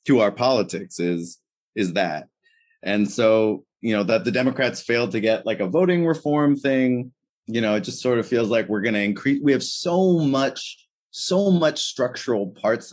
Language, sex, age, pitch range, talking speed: English, male, 30-49, 95-120 Hz, 190 wpm